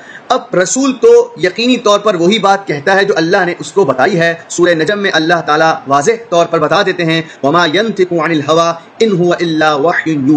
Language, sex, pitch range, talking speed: Urdu, male, 170-225 Hz, 190 wpm